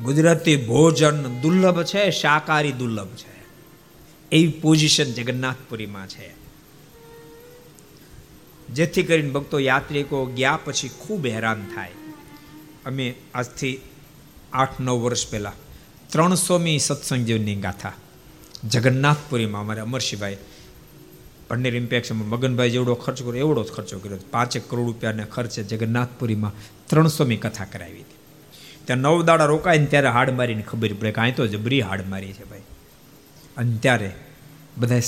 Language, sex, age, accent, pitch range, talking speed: Gujarati, male, 50-69, native, 115-150 Hz, 120 wpm